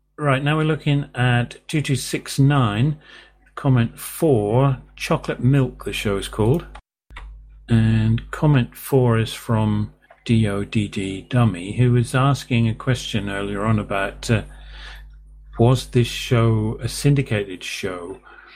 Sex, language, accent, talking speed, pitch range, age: male, English, British, 115 wpm, 110-140 Hz, 40-59